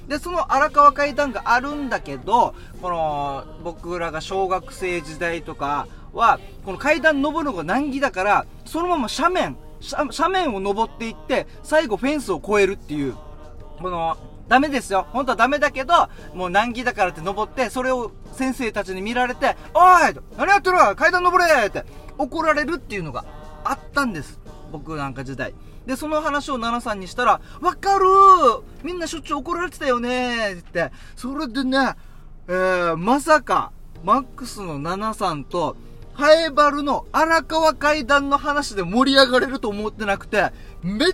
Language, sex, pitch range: Japanese, male, 180-290 Hz